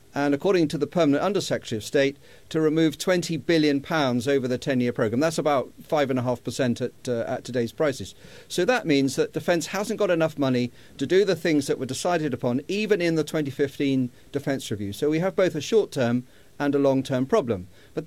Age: 40-59